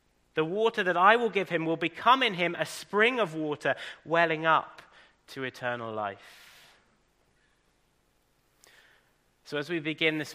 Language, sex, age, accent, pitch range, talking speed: English, male, 30-49, British, 115-165 Hz, 145 wpm